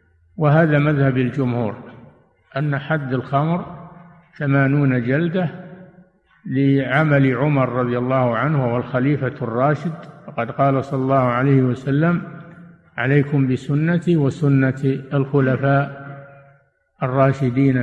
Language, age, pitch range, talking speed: Arabic, 50-69, 125-150 Hz, 90 wpm